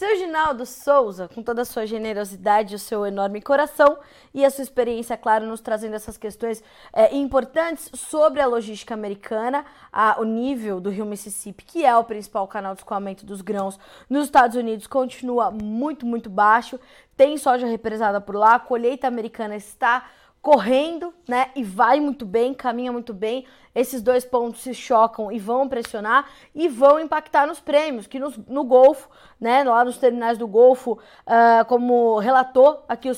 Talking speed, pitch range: 170 wpm, 230-275 Hz